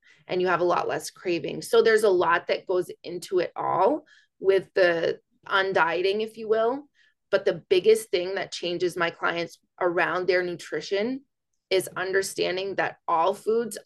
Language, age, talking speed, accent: English, 20-39, 165 wpm, American